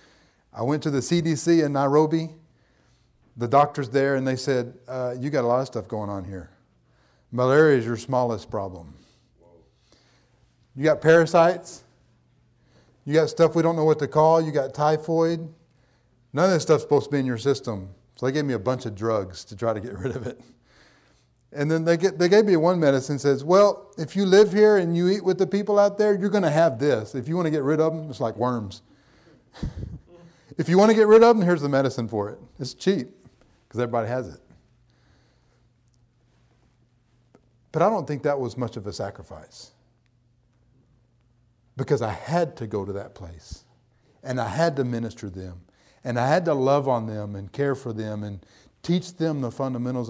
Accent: American